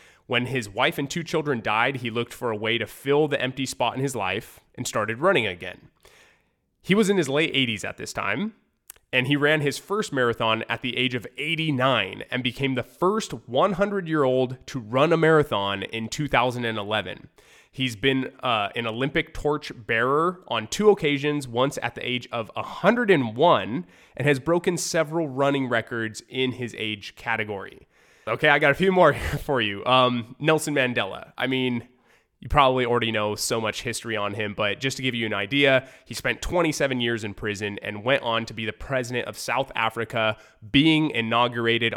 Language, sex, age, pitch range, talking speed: English, male, 20-39, 115-145 Hz, 185 wpm